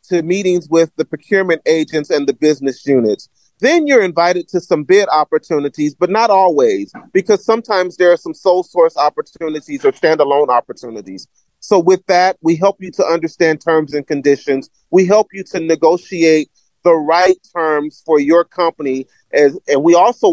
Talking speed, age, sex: 160 wpm, 40-59, male